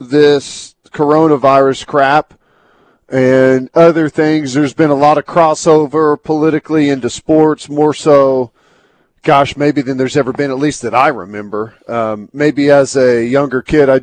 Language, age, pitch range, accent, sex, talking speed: English, 40-59, 130-160 Hz, American, male, 150 wpm